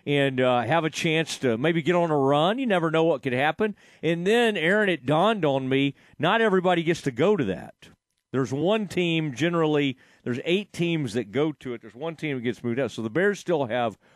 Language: English